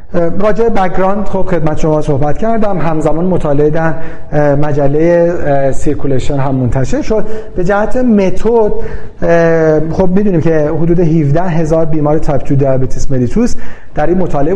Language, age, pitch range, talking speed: Persian, 40-59, 145-190 Hz, 130 wpm